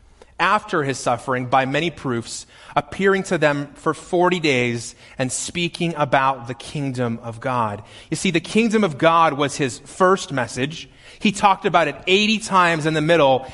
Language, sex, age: English, male, 30-49